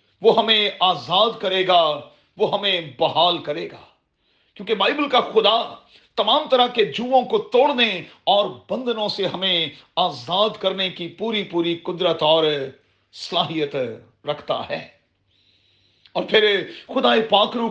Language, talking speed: Urdu, 130 wpm